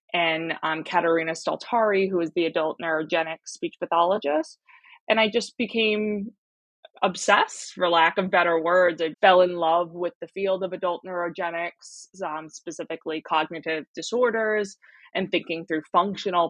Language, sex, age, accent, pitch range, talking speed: English, female, 20-39, American, 165-205 Hz, 140 wpm